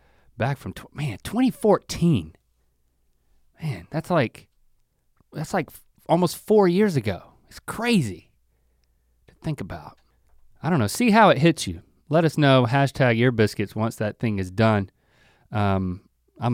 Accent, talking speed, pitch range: American, 150 wpm, 105-145 Hz